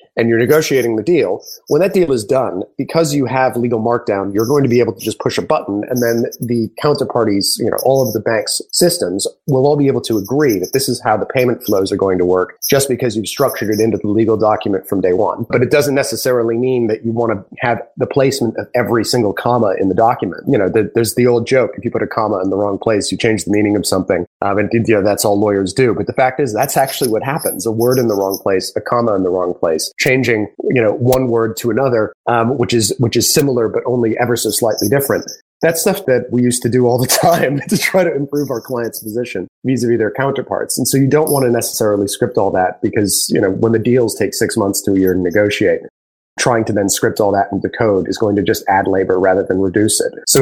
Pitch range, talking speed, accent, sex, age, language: 110-135 Hz, 255 wpm, American, male, 30-49, English